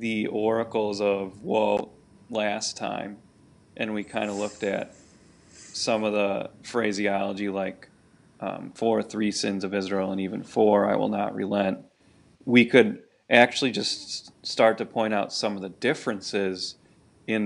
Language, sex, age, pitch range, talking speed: English, male, 30-49, 100-115 Hz, 150 wpm